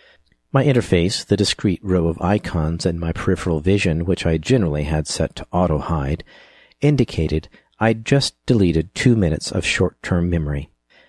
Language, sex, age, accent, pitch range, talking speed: English, male, 50-69, American, 80-105 Hz, 145 wpm